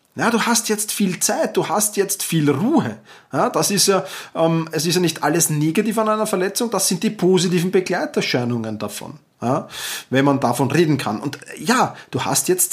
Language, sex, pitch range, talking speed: German, male, 145-200 Hz, 185 wpm